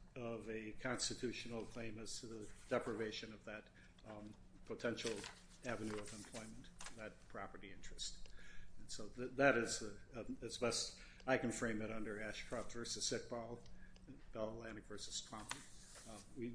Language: English